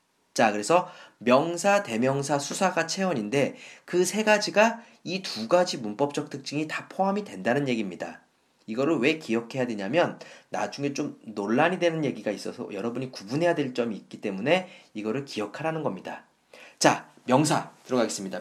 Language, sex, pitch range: Korean, male, 125-190 Hz